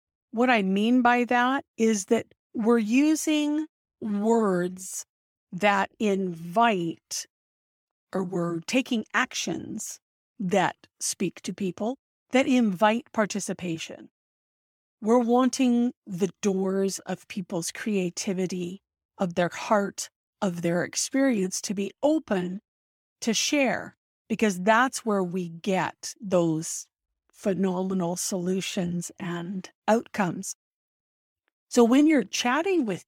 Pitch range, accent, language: 185-245 Hz, American, English